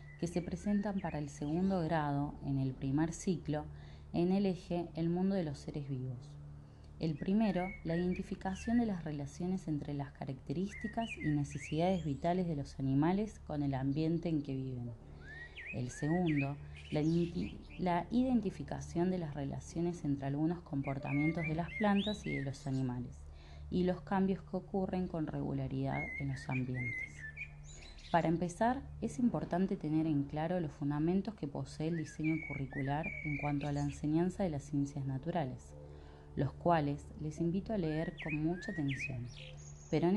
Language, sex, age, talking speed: Spanish, female, 20-39, 155 wpm